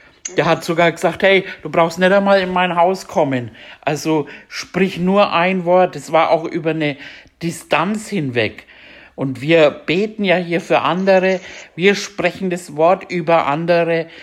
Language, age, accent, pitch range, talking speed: German, 60-79, German, 140-180 Hz, 160 wpm